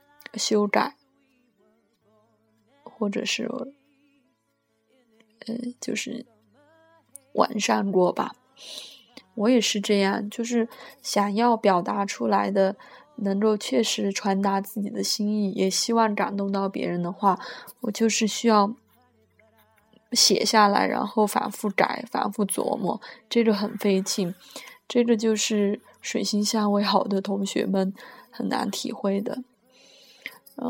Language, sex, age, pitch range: Chinese, female, 20-39, 195-240 Hz